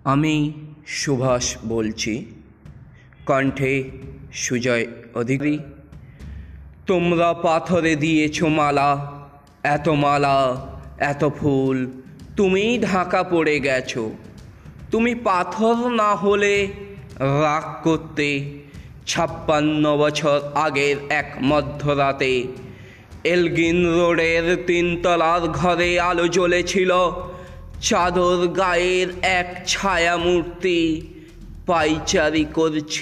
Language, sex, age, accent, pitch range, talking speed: Bengali, male, 20-39, native, 145-185 Hz, 75 wpm